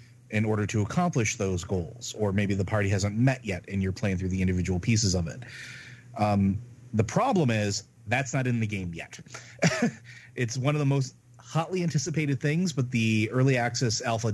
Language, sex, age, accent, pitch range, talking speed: English, male, 30-49, American, 100-125 Hz, 190 wpm